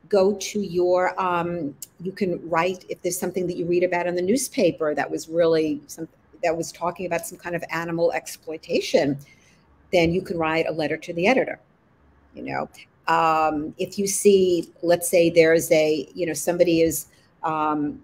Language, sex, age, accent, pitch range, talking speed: English, female, 50-69, American, 160-185 Hz, 175 wpm